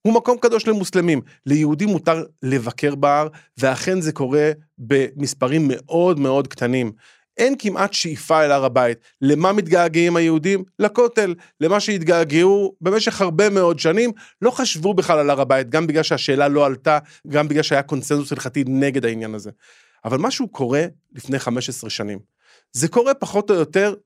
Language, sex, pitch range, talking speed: Hebrew, male, 140-200 Hz, 150 wpm